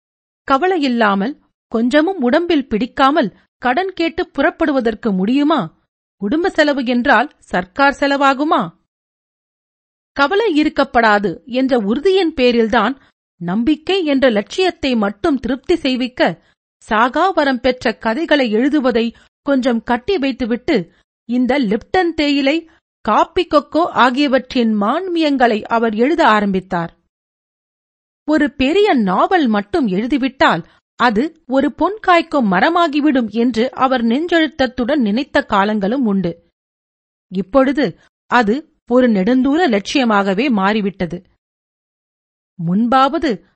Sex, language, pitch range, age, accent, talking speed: female, Tamil, 225-310 Hz, 40-59, native, 90 wpm